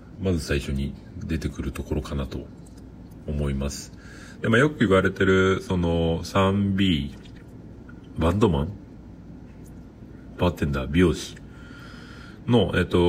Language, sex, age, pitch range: Japanese, male, 40-59, 80-105 Hz